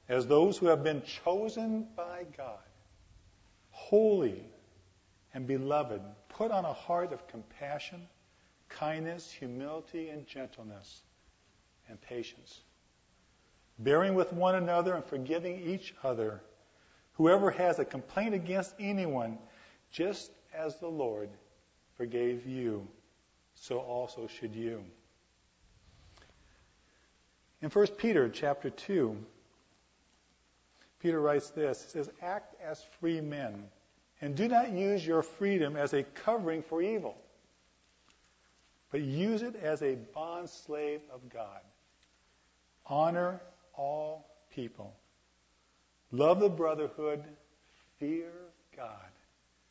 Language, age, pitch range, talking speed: English, 50-69, 105-175 Hz, 105 wpm